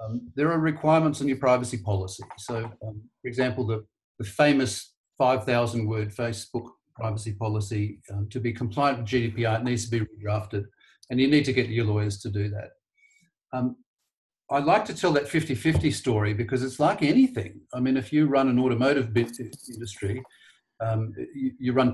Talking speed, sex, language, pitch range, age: 175 wpm, male, English, 110-135 Hz, 40-59